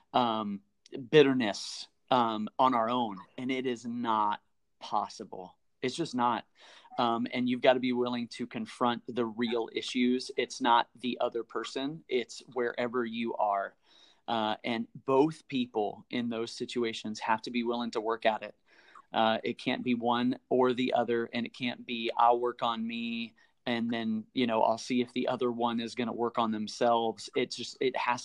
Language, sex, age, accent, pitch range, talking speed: English, male, 30-49, American, 115-125 Hz, 185 wpm